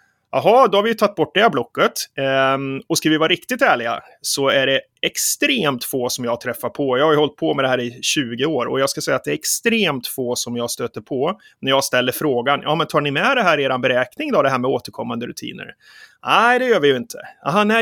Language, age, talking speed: Swedish, 30-49, 255 wpm